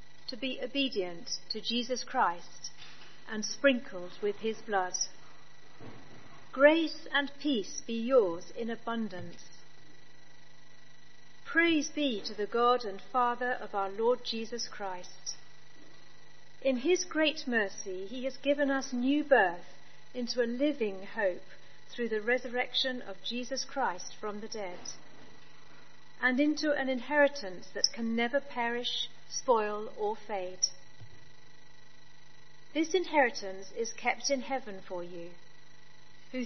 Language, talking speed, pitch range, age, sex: English, 120 wpm, 180-270 Hz, 50-69, female